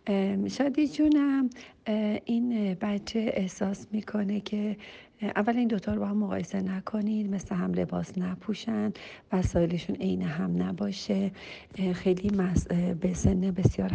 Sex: female